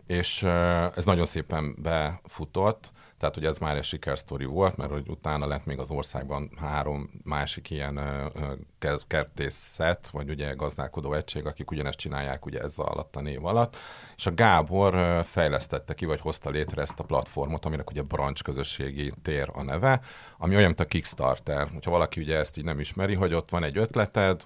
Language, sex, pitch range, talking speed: Hungarian, male, 75-90 Hz, 175 wpm